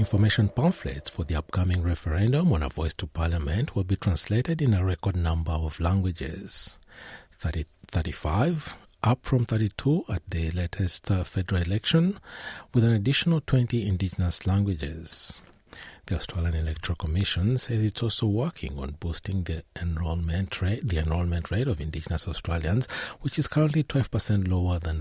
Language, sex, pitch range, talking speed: English, male, 85-110 Hz, 140 wpm